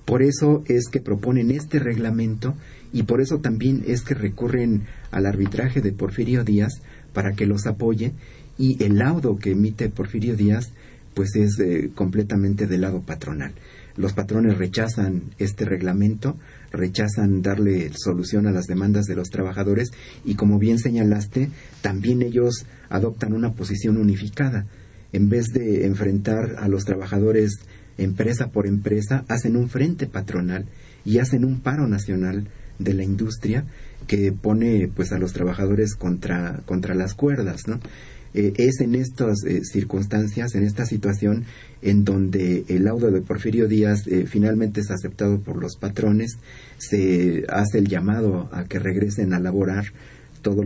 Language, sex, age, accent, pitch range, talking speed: Spanish, male, 50-69, Mexican, 100-120 Hz, 150 wpm